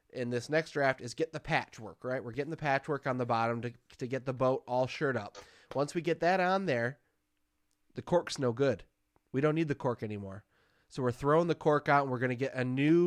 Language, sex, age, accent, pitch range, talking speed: English, male, 20-39, American, 120-150 Hz, 245 wpm